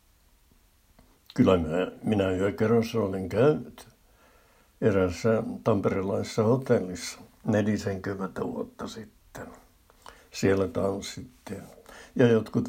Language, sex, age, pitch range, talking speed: Finnish, male, 60-79, 90-110 Hz, 85 wpm